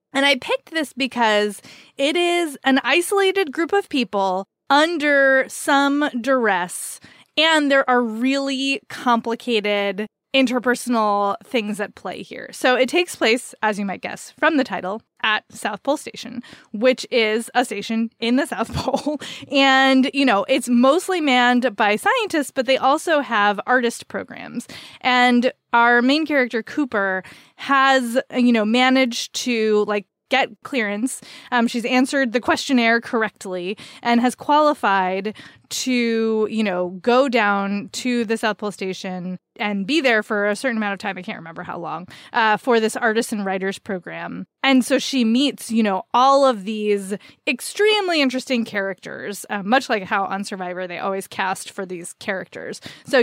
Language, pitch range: English, 210-270 Hz